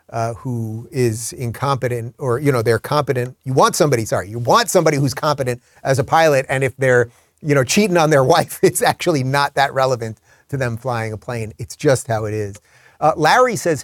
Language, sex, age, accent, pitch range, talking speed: English, male, 30-49, American, 120-155 Hz, 210 wpm